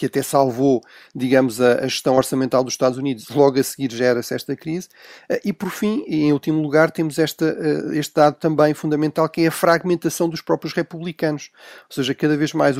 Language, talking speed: Portuguese, 190 wpm